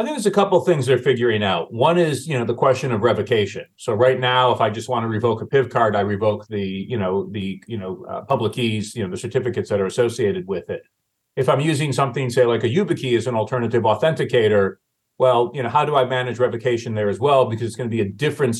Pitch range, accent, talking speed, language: 110-130 Hz, American, 260 wpm, English